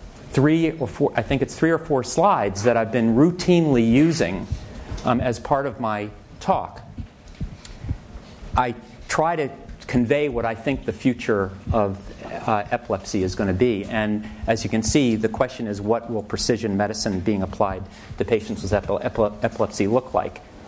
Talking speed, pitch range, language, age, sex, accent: 170 wpm, 110-130 Hz, English, 40-59, male, American